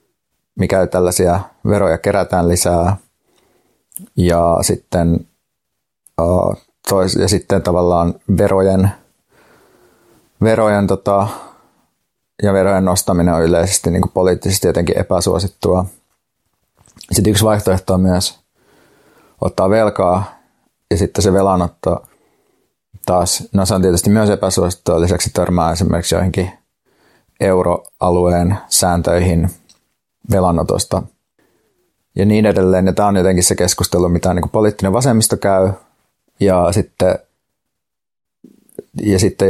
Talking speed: 100 wpm